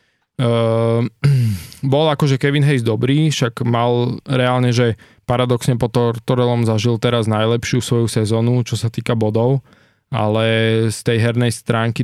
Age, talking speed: 20-39, 135 wpm